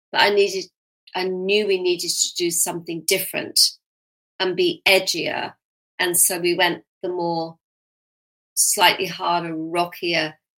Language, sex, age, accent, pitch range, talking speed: English, female, 40-59, British, 165-190 Hz, 125 wpm